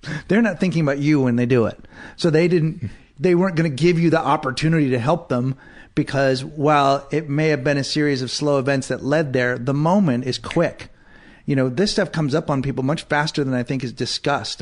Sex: male